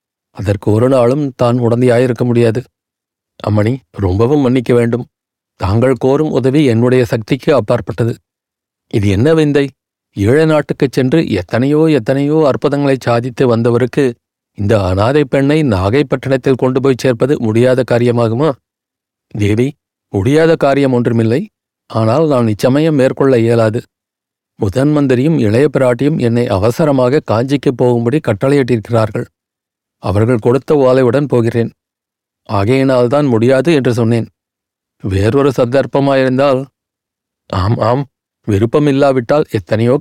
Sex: male